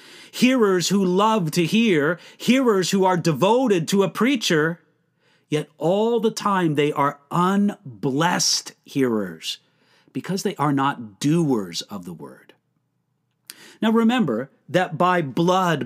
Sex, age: male, 40-59